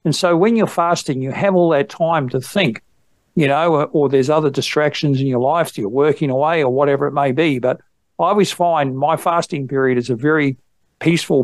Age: 50-69